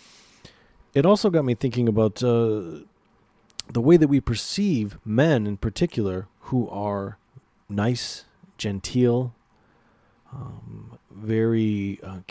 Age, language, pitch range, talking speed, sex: 30-49, English, 95-120 Hz, 105 wpm, male